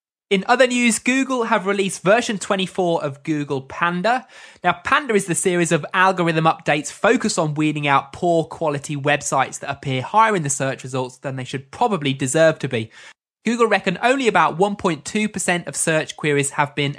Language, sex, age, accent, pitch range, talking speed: English, male, 20-39, British, 145-200 Hz, 175 wpm